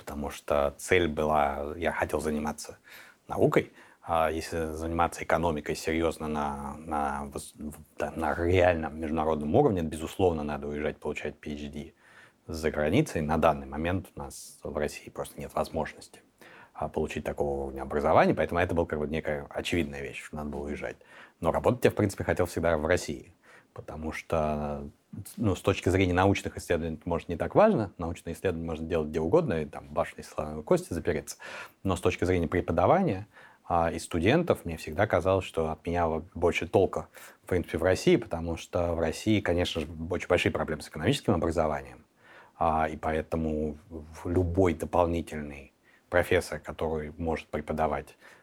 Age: 30-49